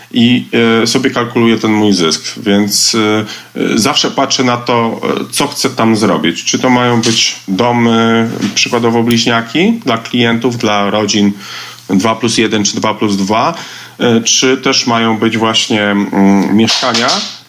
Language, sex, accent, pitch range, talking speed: Polish, male, native, 115-130 Hz, 135 wpm